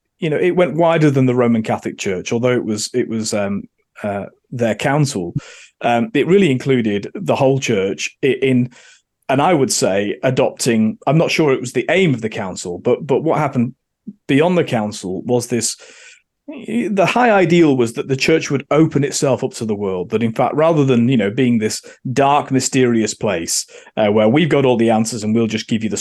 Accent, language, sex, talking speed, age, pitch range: British, English, male, 210 wpm, 30-49, 110-150 Hz